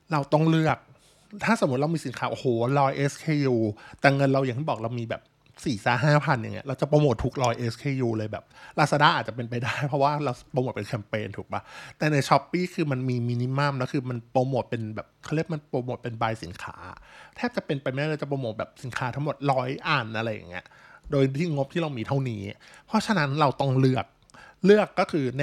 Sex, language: male, Thai